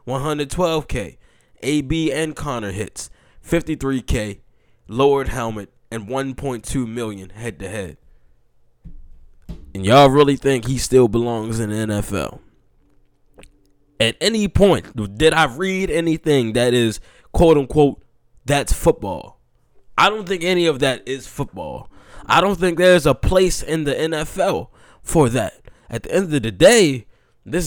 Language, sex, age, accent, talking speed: English, male, 10-29, American, 135 wpm